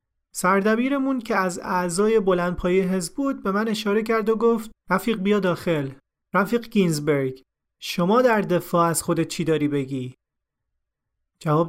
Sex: male